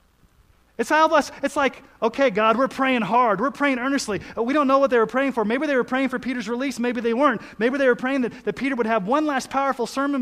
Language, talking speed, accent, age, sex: English, 255 wpm, American, 30-49, male